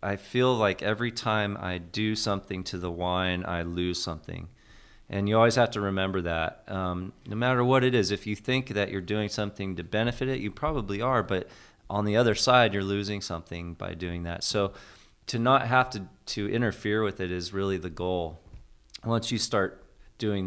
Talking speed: 200 wpm